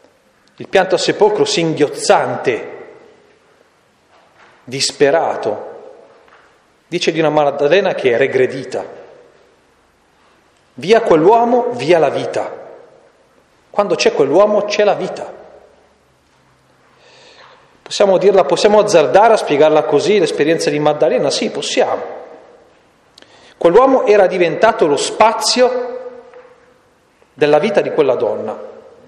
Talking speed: 95 wpm